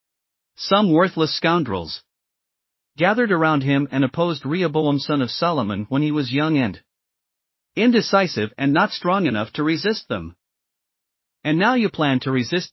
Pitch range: 135-180 Hz